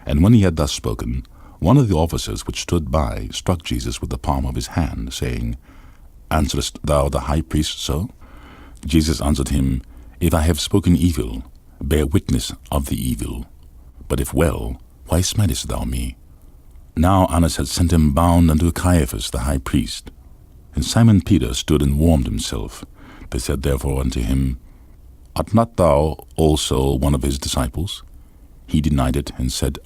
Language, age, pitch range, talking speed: English, 50-69, 65-80 Hz, 170 wpm